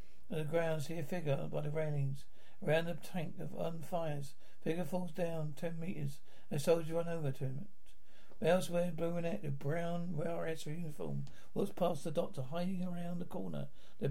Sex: male